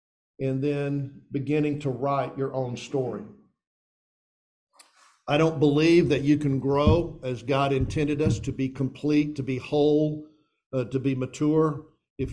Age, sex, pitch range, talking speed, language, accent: 50-69, male, 130-160 Hz, 145 wpm, English, American